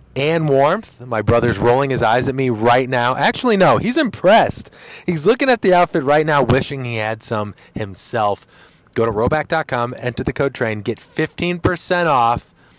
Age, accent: 30-49, American